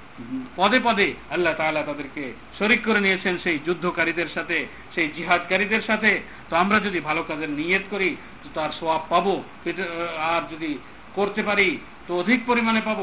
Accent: native